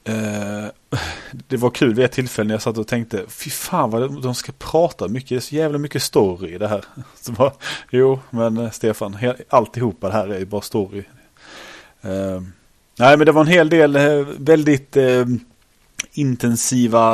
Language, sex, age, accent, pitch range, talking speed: Swedish, male, 30-49, Norwegian, 105-125 Hz, 185 wpm